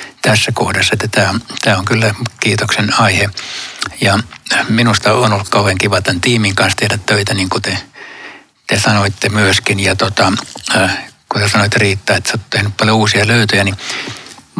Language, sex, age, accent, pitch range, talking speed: Finnish, male, 60-79, native, 100-125 Hz, 165 wpm